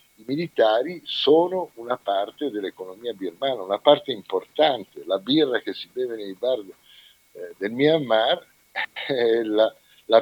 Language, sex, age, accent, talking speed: Italian, male, 50-69, native, 130 wpm